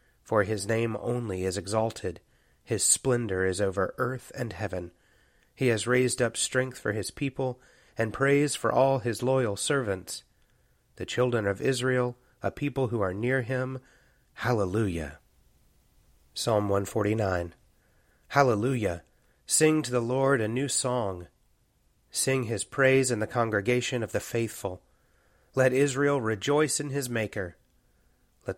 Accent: American